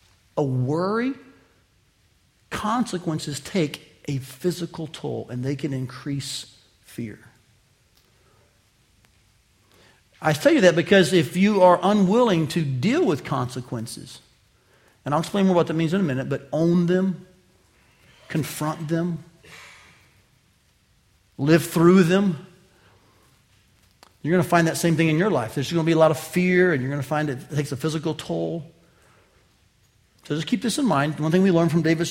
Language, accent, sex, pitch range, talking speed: English, American, male, 135-185 Hz, 150 wpm